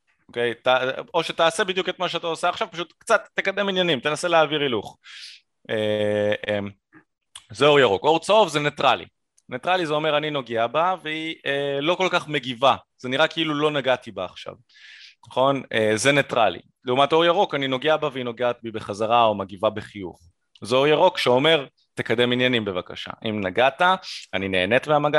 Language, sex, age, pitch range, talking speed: Hebrew, male, 20-39, 110-155 Hz, 175 wpm